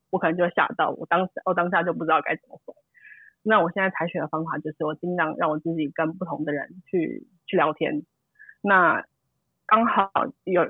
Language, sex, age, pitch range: Chinese, female, 20-39, 160-185 Hz